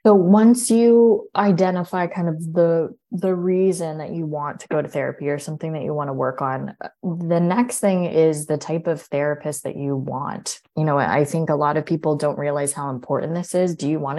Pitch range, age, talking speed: 140-160 Hz, 20-39, 220 wpm